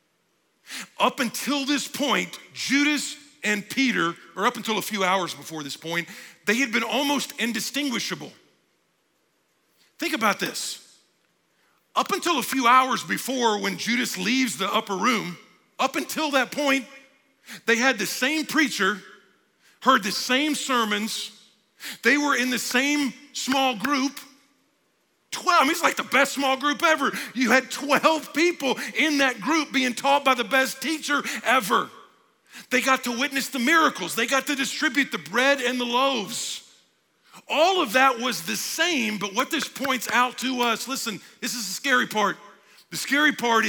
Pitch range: 215-280 Hz